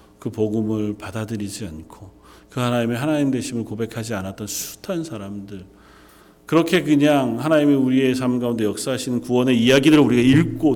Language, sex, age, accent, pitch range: Korean, male, 40-59, native, 100-145 Hz